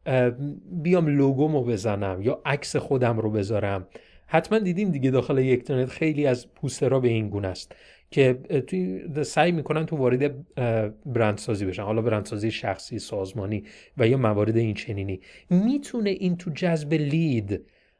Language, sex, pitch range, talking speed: Persian, male, 120-180 Hz, 145 wpm